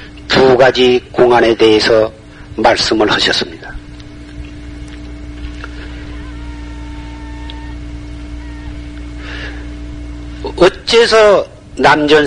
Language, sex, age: Korean, male, 40-59